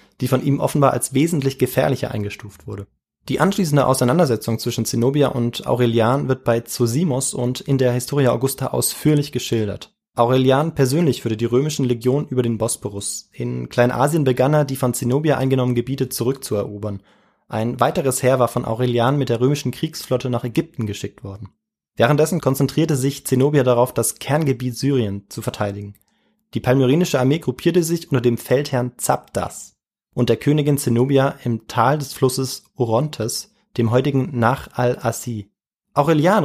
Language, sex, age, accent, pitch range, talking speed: German, male, 20-39, German, 115-140 Hz, 150 wpm